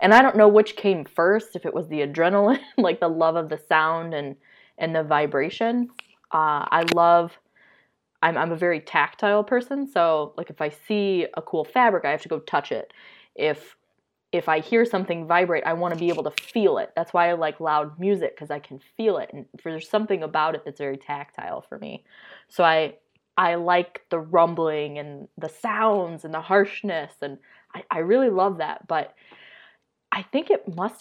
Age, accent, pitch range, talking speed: 20-39, American, 160-215 Hz, 200 wpm